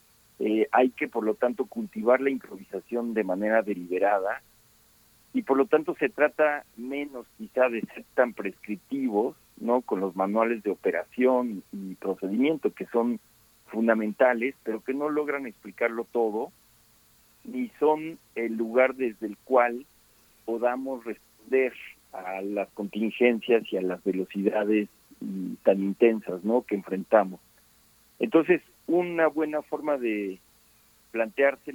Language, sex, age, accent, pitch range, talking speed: Spanish, male, 50-69, Mexican, 105-130 Hz, 130 wpm